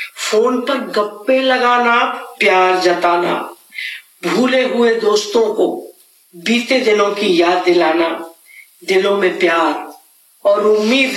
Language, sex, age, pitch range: English, female, 50-69, 175-245 Hz